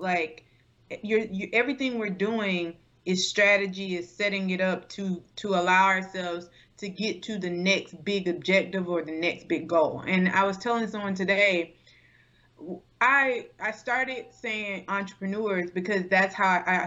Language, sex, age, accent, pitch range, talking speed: English, female, 30-49, American, 185-220 Hz, 155 wpm